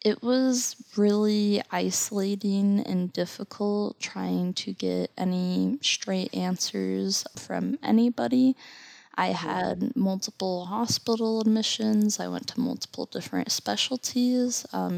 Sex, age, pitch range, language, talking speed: female, 10-29, 175-220 Hz, English, 105 wpm